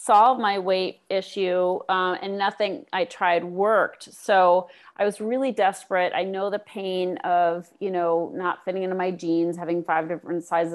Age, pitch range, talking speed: 30-49, 165-185 Hz, 180 wpm